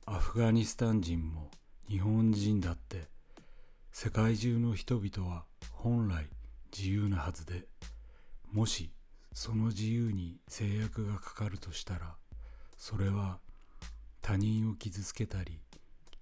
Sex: male